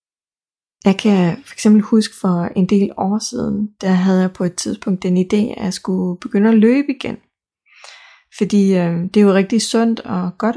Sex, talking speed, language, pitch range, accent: female, 185 wpm, Danish, 190-230 Hz, native